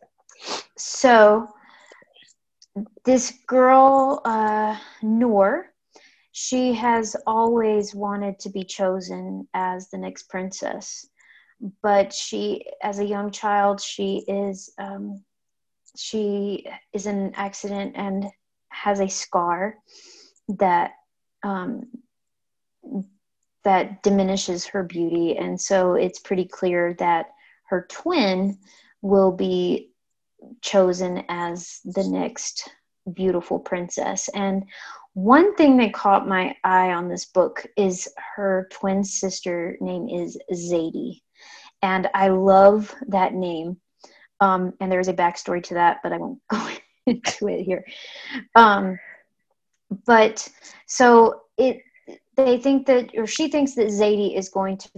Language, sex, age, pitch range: English, female, 30-49, 185-220 Hz